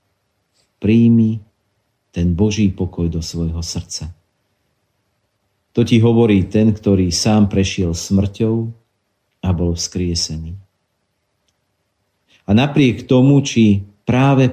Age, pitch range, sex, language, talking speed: 50-69, 95-110 Hz, male, Slovak, 95 wpm